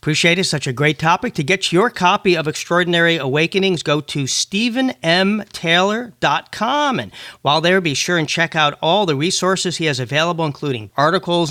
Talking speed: 165 wpm